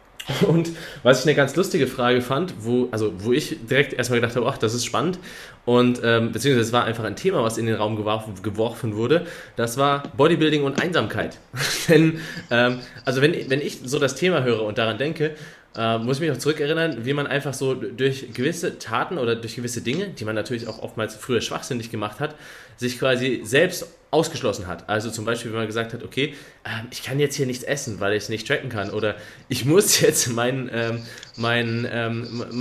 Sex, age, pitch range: male, 20-39, 115-140 Hz